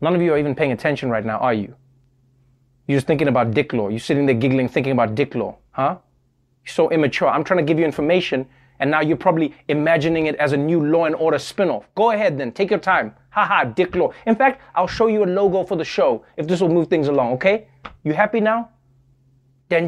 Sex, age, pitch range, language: male, 20-39, 135-225 Hz, English